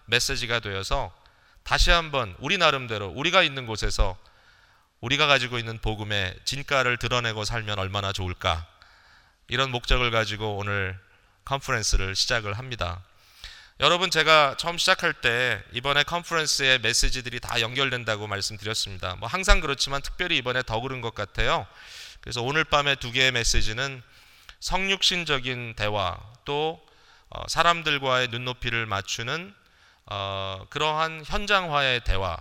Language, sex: Korean, male